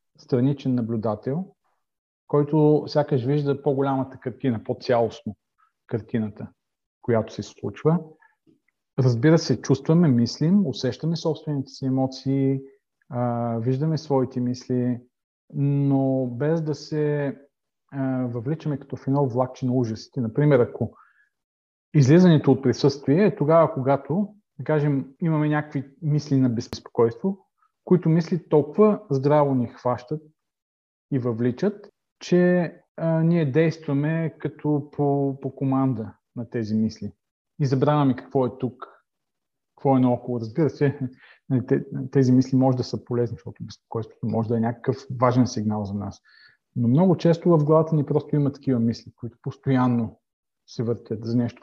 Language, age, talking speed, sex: Bulgarian, 40-59, 125 wpm, male